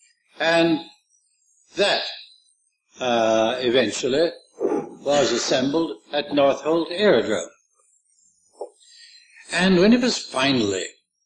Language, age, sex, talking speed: English, 60-79, male, 80 wpm